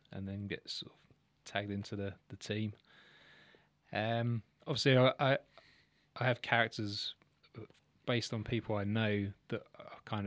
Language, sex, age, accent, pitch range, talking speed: English, male, 20-39, British, 100-115 Hz, 145 wpm